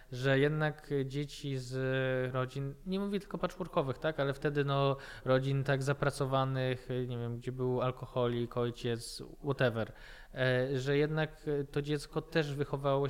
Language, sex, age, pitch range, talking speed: Polish, male, 20-39, 125-140 Hz, 135 wpm